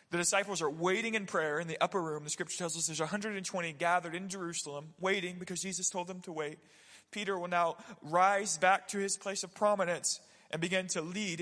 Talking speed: 210 wpm